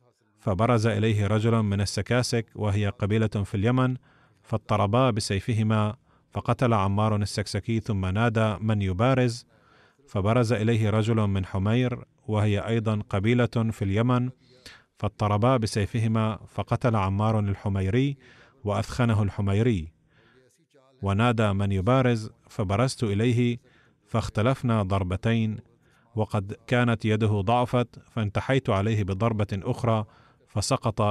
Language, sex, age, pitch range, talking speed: Arabic, male, 30-49, 105-120 Hz, 100 wpm